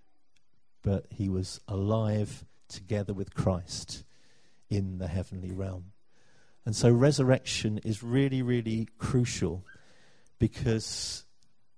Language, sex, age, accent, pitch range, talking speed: English, male, 50-69, British, 95-120 Hz, 95 wpm